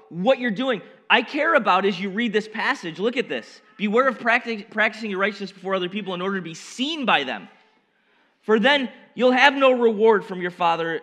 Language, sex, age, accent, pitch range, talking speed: English, male, 30-49, American, 200-240 Hz, 205 wpm